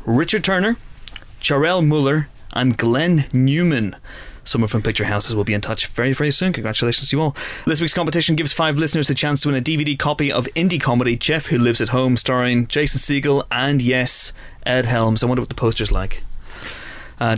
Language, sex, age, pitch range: English, male, 20-39, 110-140 Hz